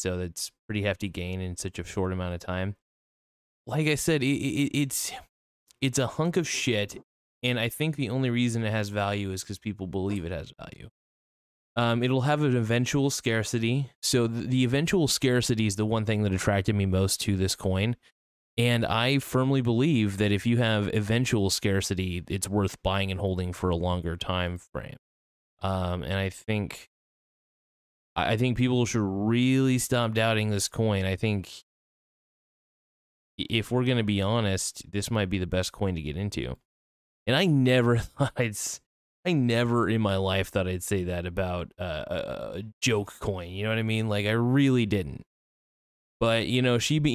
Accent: American